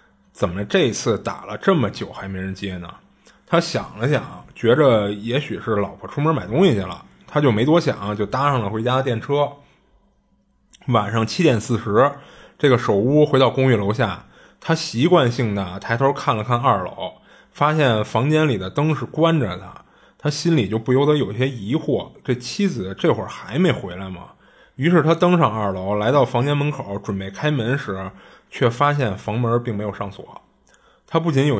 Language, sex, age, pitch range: Chinese, male, 20-39, 105-150 Hz